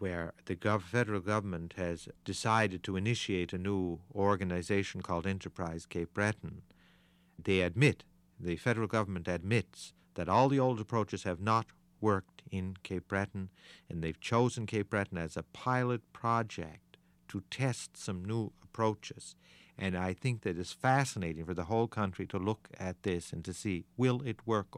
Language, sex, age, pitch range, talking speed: English, male, 50-69, 90-105 Hz, 160 wpm